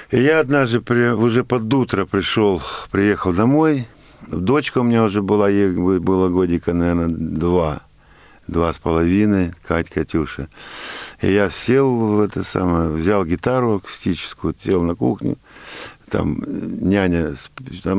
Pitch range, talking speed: 90-115 Hz, 135 wpm